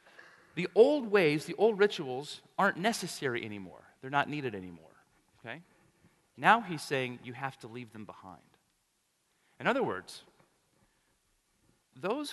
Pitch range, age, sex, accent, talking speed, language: 135-185 Hz, 40-59, male, American, 130 wpm, English